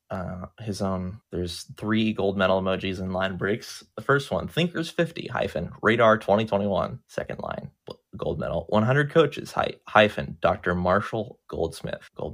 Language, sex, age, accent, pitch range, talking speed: English, male, 20-39, American, 95-120 Hz, 145 wpm